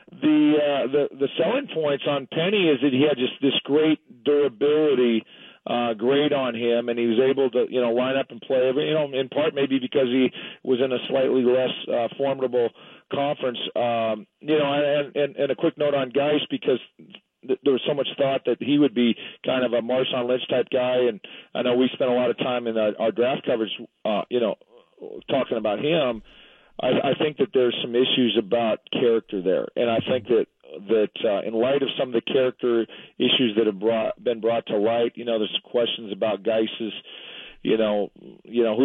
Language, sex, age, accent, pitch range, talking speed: English, male, 40-59, American, 115-145 Hz, 215 wpm